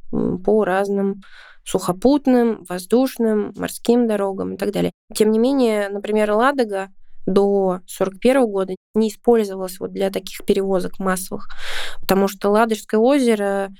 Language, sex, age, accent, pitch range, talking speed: Russian, female, 20-39, native, 190-230 Hz, 115 wpm